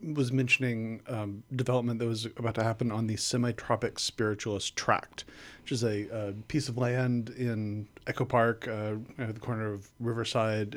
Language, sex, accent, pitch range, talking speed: English, male, American, 110-125 Hz, 165 wpm